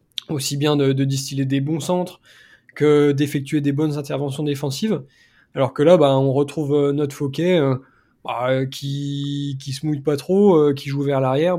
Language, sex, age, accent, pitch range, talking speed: French, male, 20-39, French, 135-160 Hz, 180 wpm